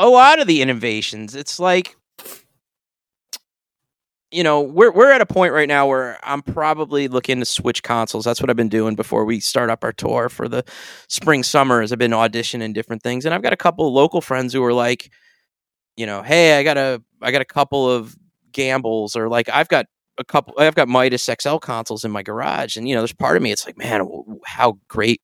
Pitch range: 110-140 Hz